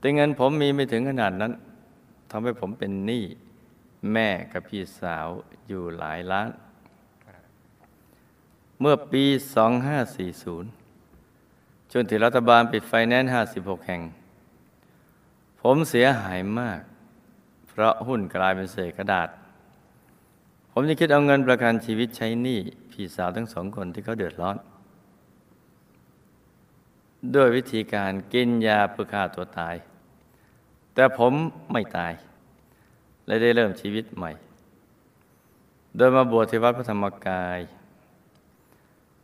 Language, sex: Thai, male